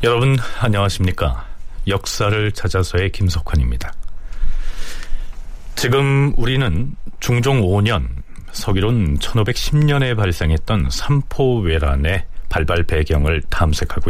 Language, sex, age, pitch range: Korean, male, 40-59, 80-125 Hz